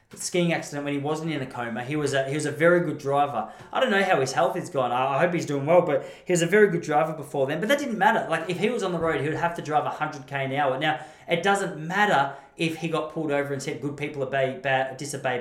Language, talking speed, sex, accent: English, 300 wpm, male, Australian